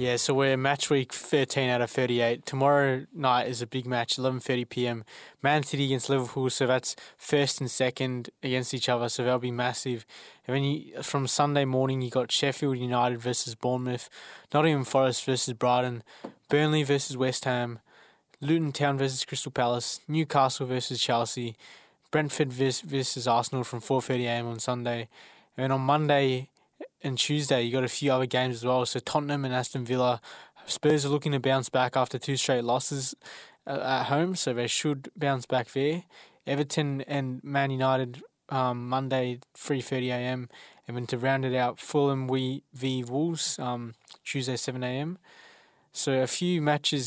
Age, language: 20-39, English